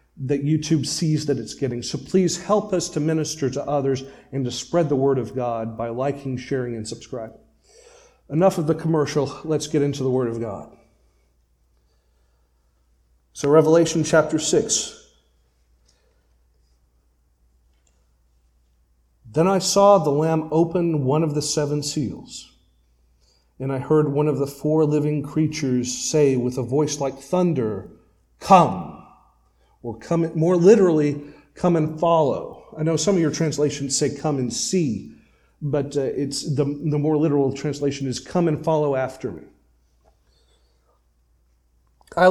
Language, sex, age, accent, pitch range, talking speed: English, male, 40-59, American, 105-160 Hz, 140 wpm